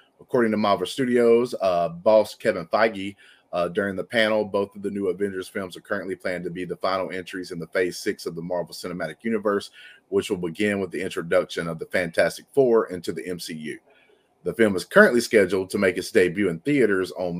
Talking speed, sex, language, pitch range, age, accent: 205 wpm, male, English, 100-125 Hz, 30-49, American